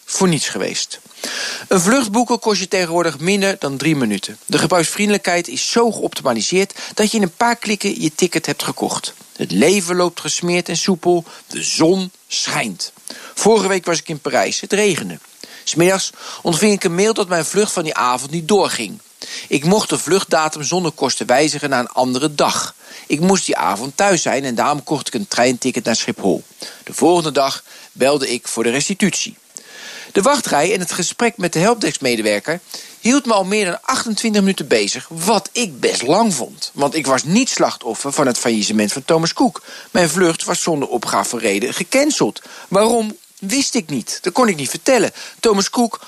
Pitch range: 155-210 Hz